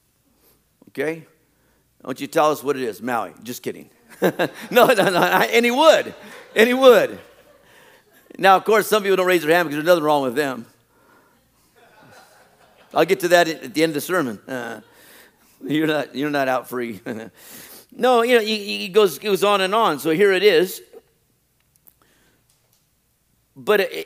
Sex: male